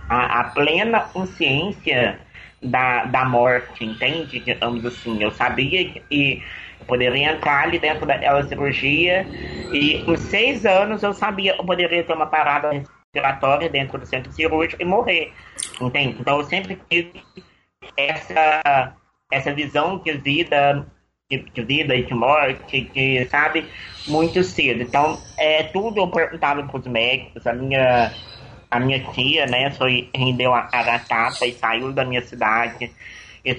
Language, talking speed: Portuguese, 145 wpm